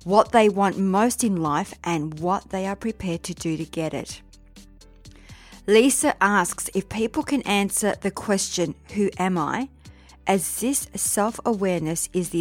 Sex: female